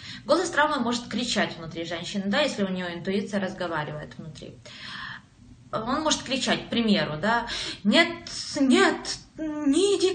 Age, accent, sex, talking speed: 20-39, native, female, 135 wpm